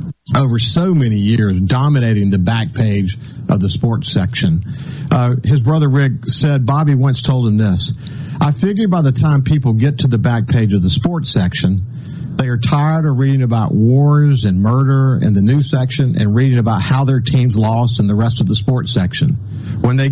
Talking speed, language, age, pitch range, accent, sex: 195 wpm, English, 50-69, 115-145 Hz, American, male